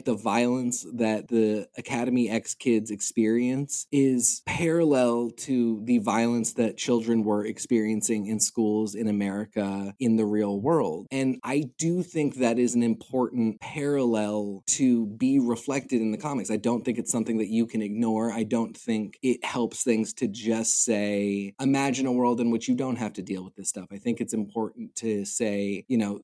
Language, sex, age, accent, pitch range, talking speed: English, male, 20-39, American, 110-130 Hz, 180 wpm